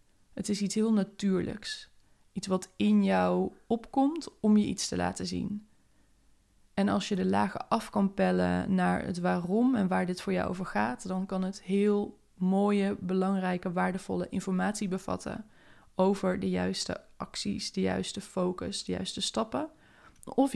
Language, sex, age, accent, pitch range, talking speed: Dutch, female, 20-39, Dutch, 165-200 Hz, 160 wpm